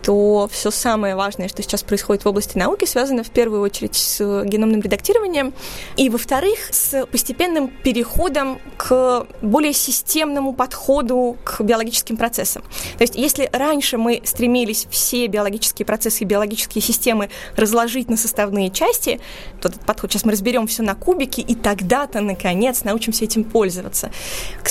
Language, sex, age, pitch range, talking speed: Russian, female, 20-39, 210-250 Hz, 150 wpm